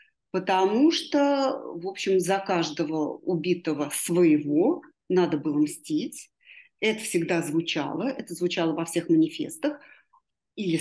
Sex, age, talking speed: female, 40-59, 110 wpm